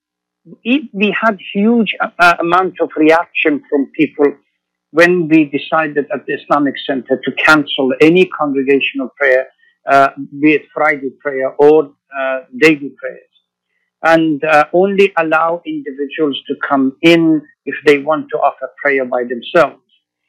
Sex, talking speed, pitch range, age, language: male, 140 wpm, 135-170 Hz, 60-79, Arabic